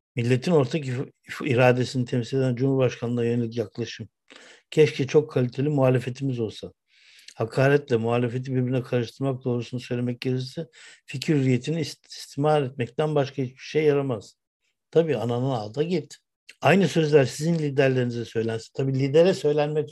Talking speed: 125 wpm